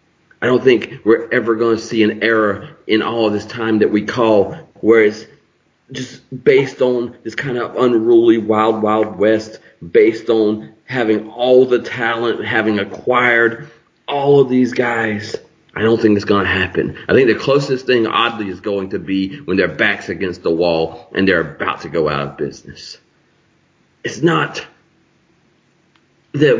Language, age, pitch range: English, 40-59, 105-130 Hz